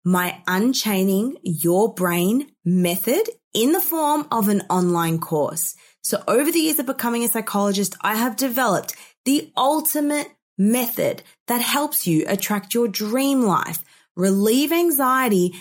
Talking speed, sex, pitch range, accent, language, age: 135 wpm, female, 185-270 Hz, Australian, English, 20-39